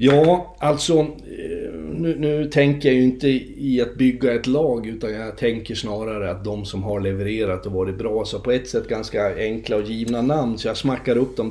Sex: male